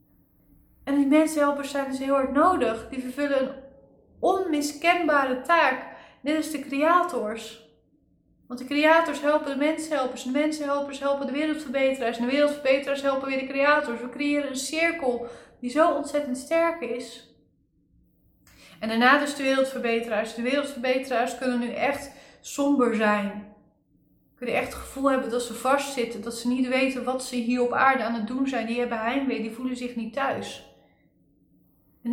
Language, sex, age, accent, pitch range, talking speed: Dutch, female, 20-39, Dutch, 230-280 Hz, 165 wpm